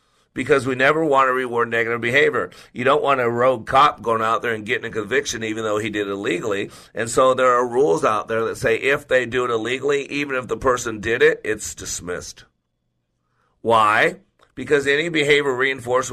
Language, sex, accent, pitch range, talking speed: English, male, American, 110-150 Hz, 200 wpm